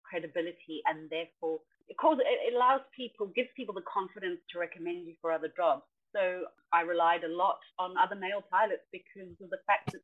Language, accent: English, British